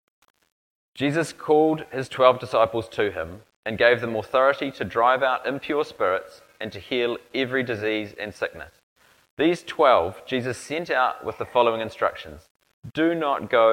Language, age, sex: English, 30-49, male